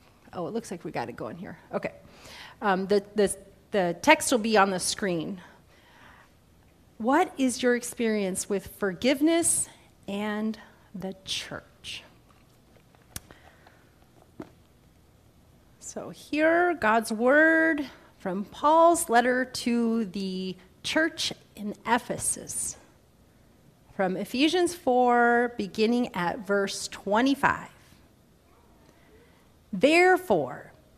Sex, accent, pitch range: female, American, 200-275 Hz